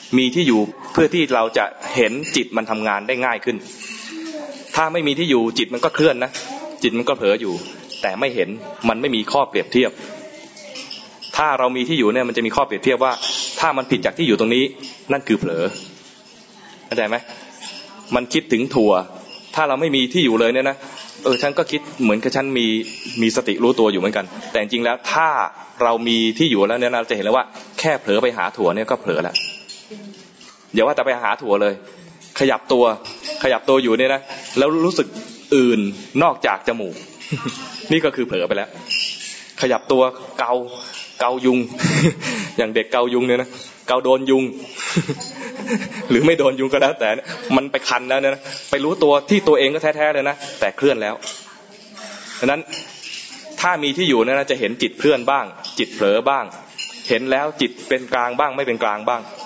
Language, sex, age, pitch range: English, male, 20-39, 120-170 Hz